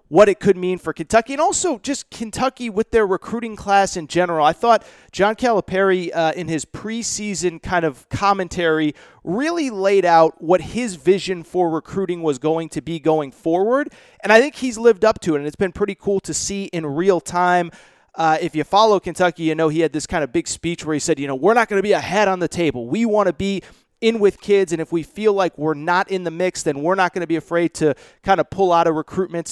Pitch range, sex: 155-200 Hz, male